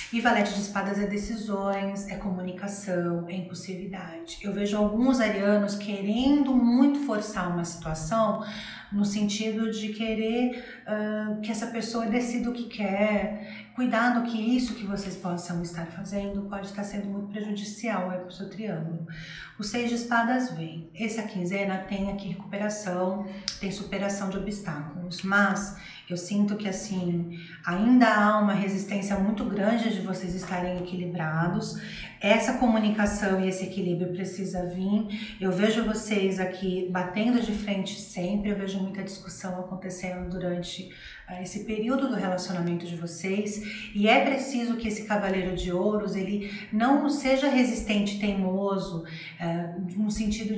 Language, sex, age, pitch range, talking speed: Portuguese, female, 40-59, 185-215 Hz, 140 wpm